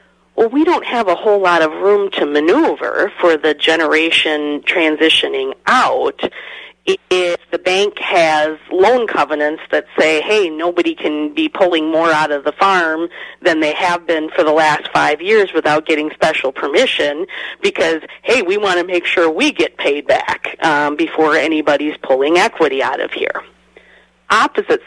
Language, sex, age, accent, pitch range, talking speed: English, female, 40-59, American, 155-230 Hz, 160 wpm